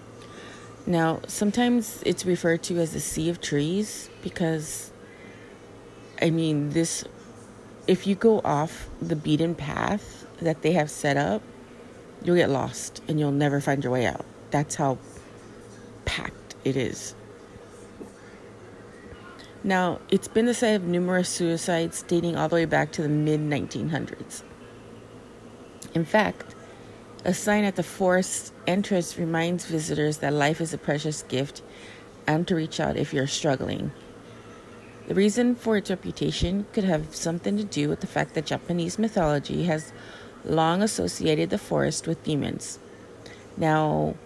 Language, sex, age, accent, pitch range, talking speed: English, female, 30-49, American, 150-185 Hz, 140 wpm